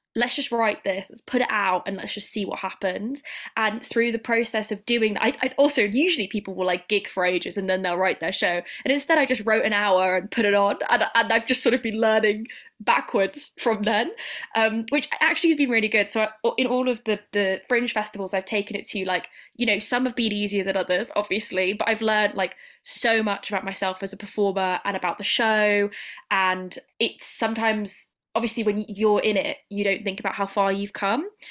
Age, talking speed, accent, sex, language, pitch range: 10-29, 230 wpm, British, female, English, 200-230 Hz